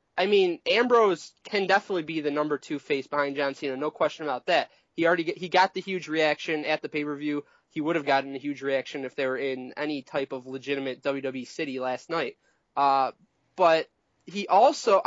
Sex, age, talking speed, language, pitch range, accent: male, 20-39, 205 wpm, English, 145-200 Hz, American